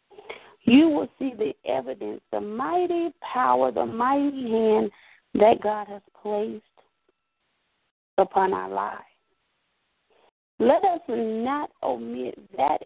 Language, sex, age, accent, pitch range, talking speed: English, female, 40-59, American, 220-335 Hz, 105 wpm